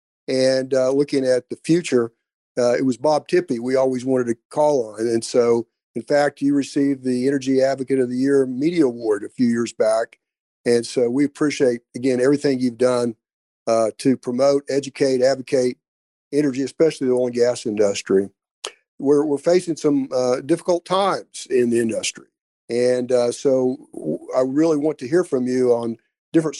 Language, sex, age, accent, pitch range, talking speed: English, male, 50-69, American, 125-145 Hz, 175 wpm